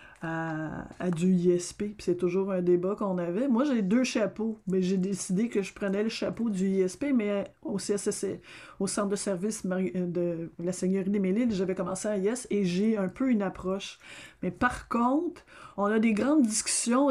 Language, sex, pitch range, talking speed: French, female, 195-240 Hz, 195 wpm